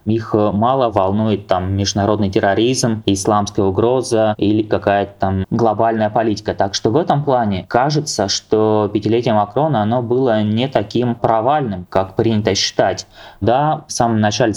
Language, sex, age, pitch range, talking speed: Russian, male, 20-39, 100-115 Hz, 130 wpm